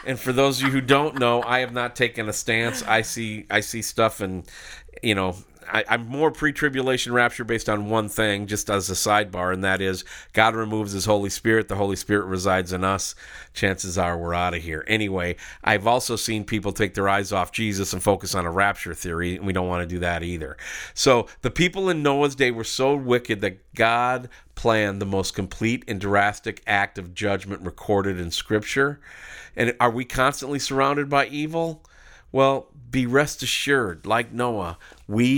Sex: male